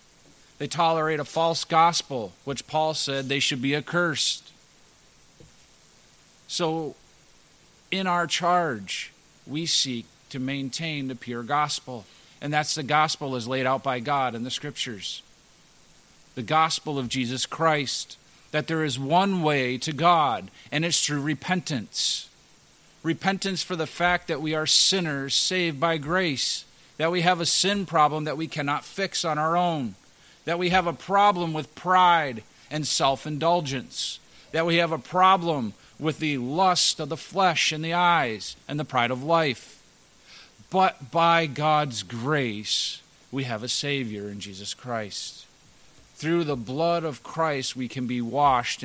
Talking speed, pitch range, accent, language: 150 wpm, 130-165 Hz, American, English